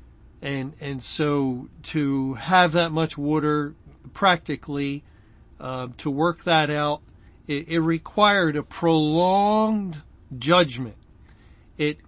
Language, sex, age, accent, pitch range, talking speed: English, male, 50-69, American, 135-165 Hz, 105 wpm